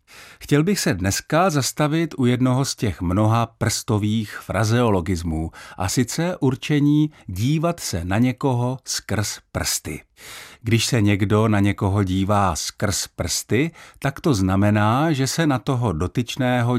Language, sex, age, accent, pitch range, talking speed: Czech, male, 50-69, native, 100-130 Hz, 130 wpm